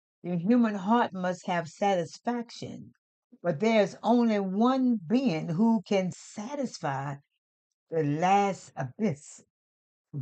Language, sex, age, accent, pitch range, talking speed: English, female, 60-79, American, 150-200 Hz, 110 wpm